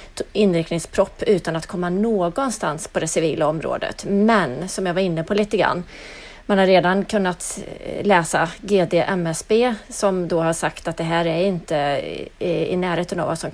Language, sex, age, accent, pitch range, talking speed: English, female, 30-49, Swedish, 165-195 Hz, 165 wpm